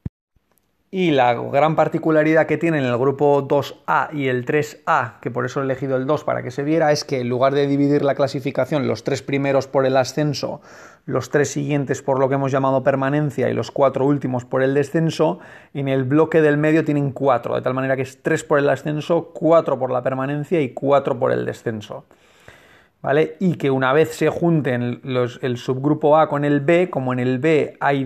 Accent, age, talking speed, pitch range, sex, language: Spanish, 30-49, 205 wpm, 130-155 Hz, male, Spanish